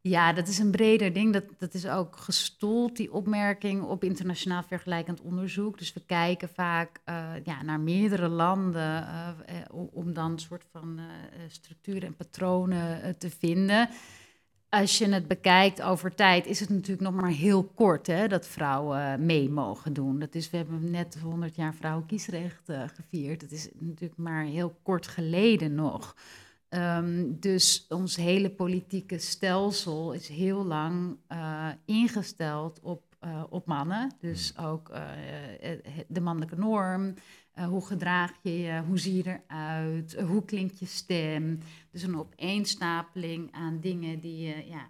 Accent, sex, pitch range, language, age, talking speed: Dutch, female, 160-185 Hz, Dutch, 30-49, 155 wpm